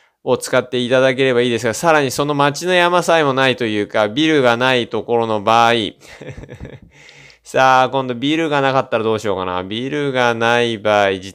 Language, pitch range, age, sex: Japanese, 105-140 Hz, 20-39, male